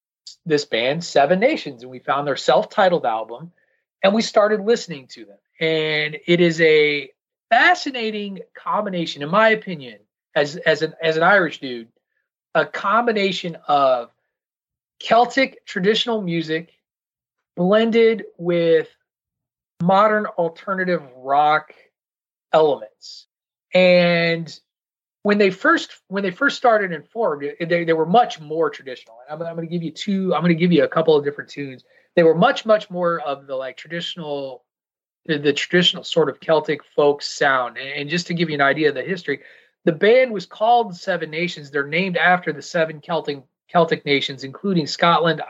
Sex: male